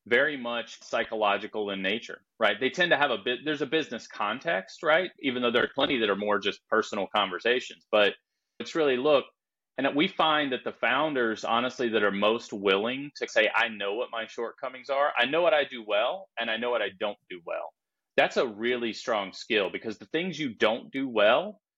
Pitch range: 105-130 Hz